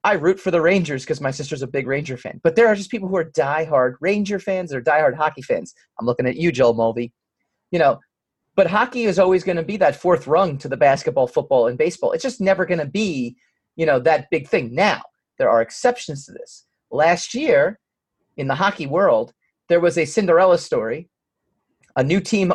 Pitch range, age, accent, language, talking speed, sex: 135-185 Hz, 30-49, American, English, 215 wpm, male